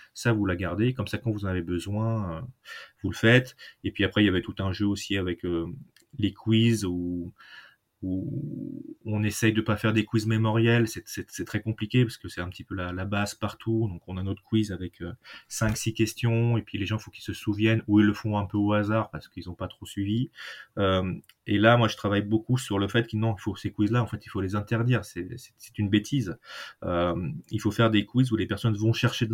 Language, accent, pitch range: French, French, 95-115 Hz